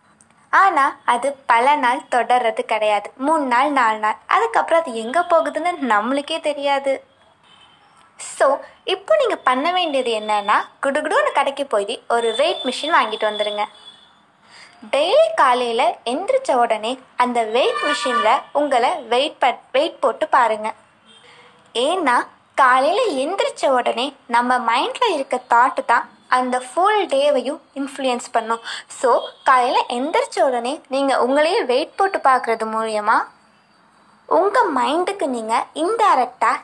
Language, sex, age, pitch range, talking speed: Tamil, female, 20-39, 235-315 Hz, 115 wpm